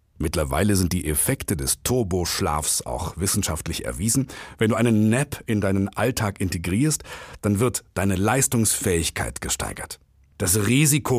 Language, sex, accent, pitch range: German, male, German, 95-140 Hz